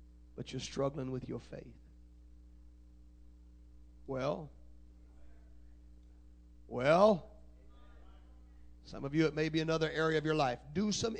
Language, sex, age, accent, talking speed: English, male, 40-59, American, 115 wpm